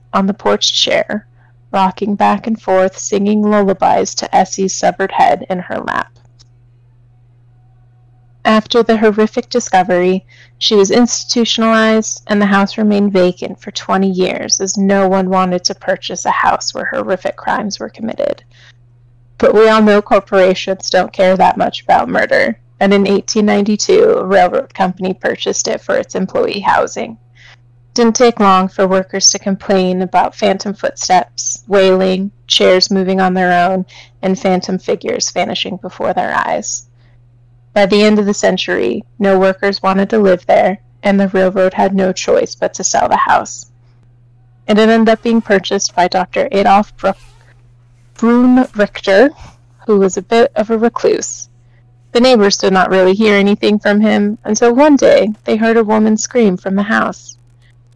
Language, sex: English, female